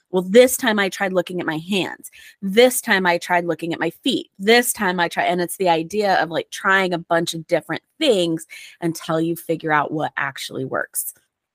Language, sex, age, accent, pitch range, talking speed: English, female, 20-39, American, 170-210 Hz, 210 wpm